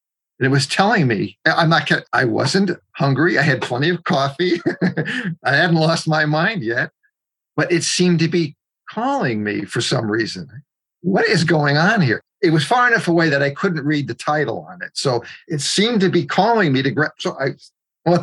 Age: 50-69